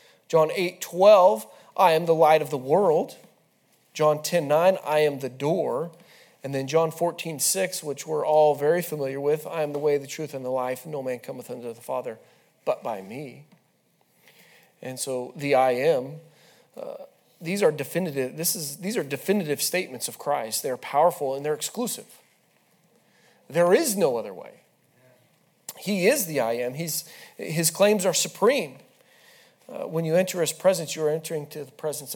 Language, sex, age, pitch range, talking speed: English, male, 40-59, 140-185 Hz, 170 wpm